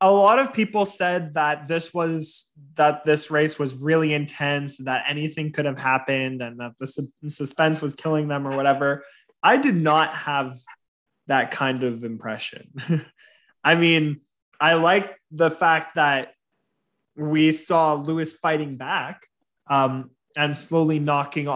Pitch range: 135-160 Hz